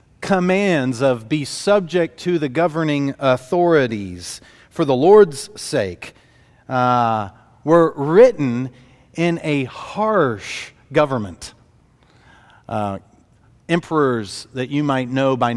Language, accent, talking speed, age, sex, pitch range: English, American, 100 wpm, 40-59, male, 120-150 Hz